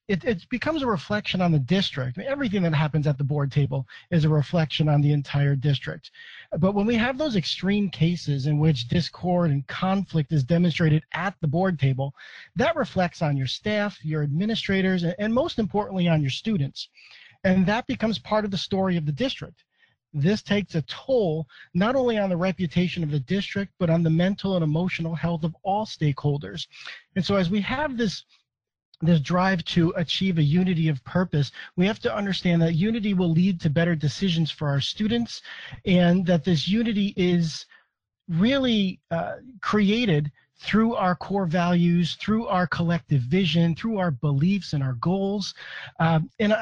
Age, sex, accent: 40-59, male, American